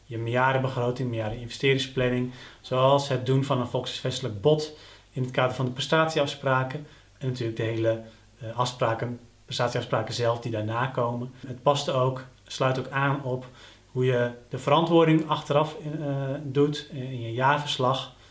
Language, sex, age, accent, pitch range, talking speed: Dutch, male, 30-49, Dutch, 120-140 Hz, 150 wpm